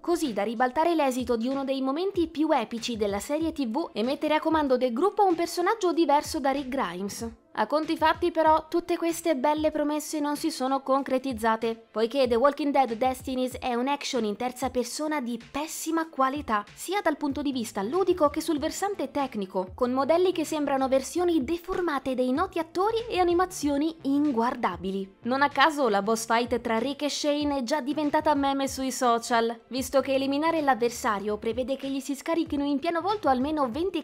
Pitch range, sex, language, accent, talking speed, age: 235-310 Hz, female, Italian, native, 185 wpm, 20-39